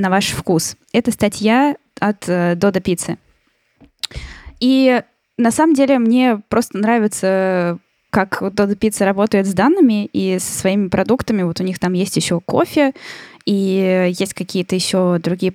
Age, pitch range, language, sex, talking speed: 10-29, 180-230 Hz, Russian, female, 150 wpm